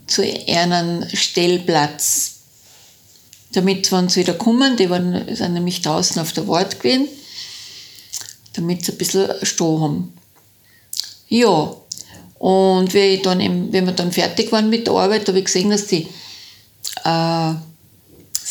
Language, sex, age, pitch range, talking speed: German, female, 60-79, 165-220 Hz, 125 wpm